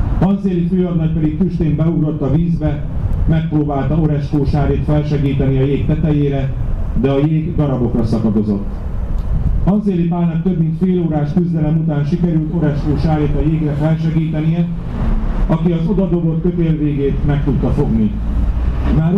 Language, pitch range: Hungarian, 140-170 Hz